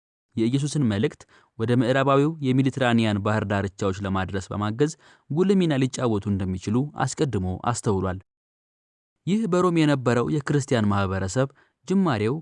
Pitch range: 105-150 Hz